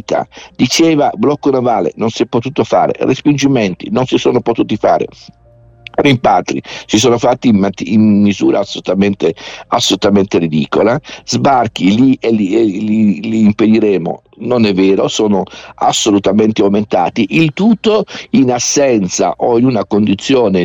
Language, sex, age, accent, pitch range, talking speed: Italian, male, 50-69, native, 100-125 Hz, 130 wpm